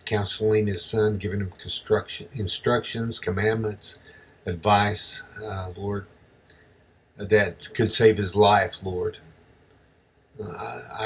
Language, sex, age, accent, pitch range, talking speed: English, male, 50-69, American, 95-110 Hz, 100 wpm